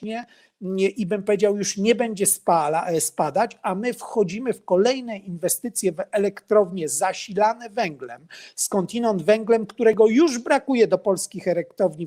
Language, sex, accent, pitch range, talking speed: Polish, male, native, 175-220 Hz, 135 wpm